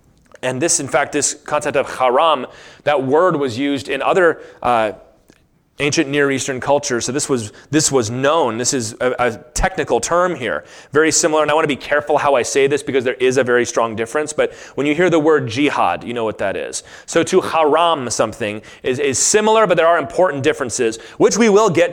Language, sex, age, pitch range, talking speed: English, male, 30-49, 145-195 Hz, 215 wpm